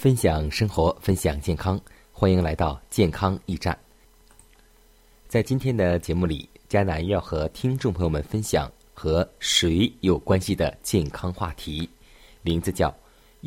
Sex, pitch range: male, 85-110 Hz